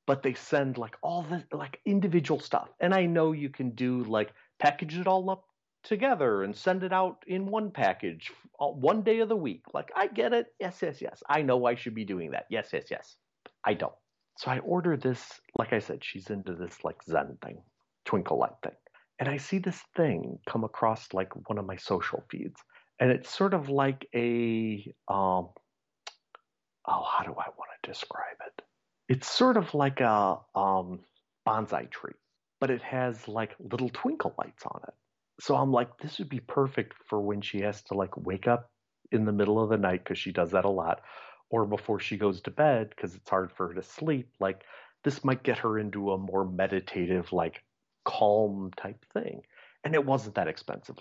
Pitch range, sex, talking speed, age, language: 105-150 Hz, male, 200 wpm, 40-59, English